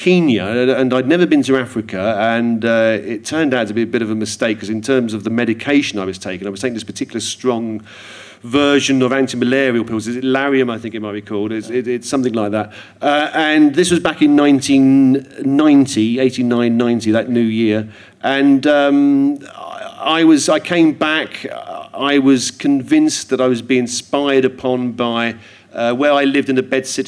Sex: male